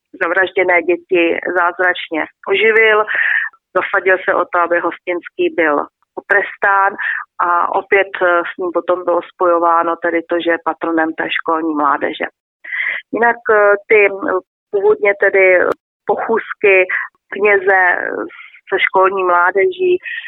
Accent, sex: native, female